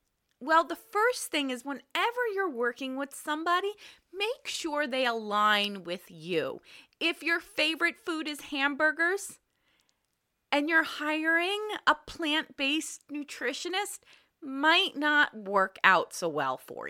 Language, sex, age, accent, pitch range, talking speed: English, female, 30-49, American, 215-295 Hz, 130 wpm